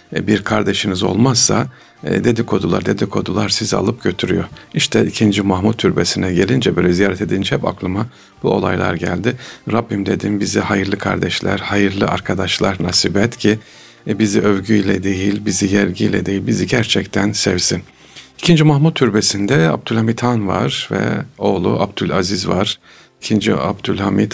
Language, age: Turkish, 50-69